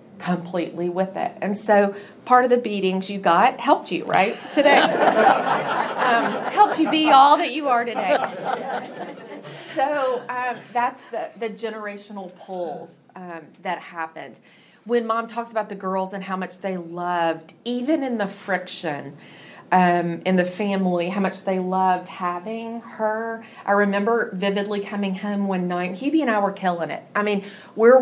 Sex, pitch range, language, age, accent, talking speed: female, 180-225 Hz, English, 30-49, American, 160 wpm